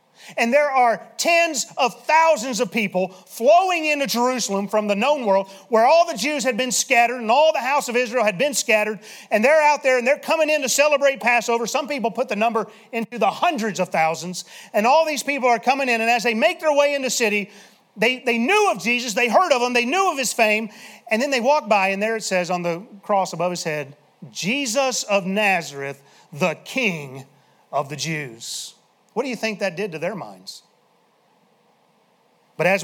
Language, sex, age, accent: English, male, 40-59, American